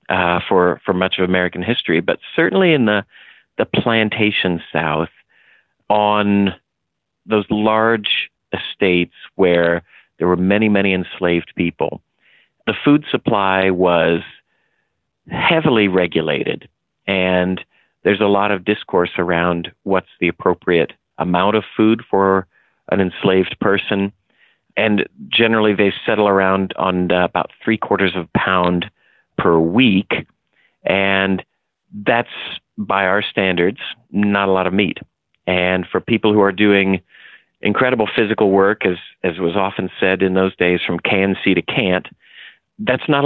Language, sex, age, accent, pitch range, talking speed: English, male, 50-69, American, 90-105 Hz, 135 wpm